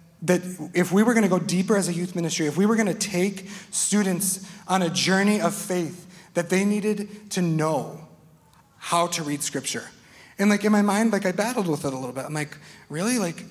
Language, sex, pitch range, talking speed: English, male, 170-215 Hz, 220 wpm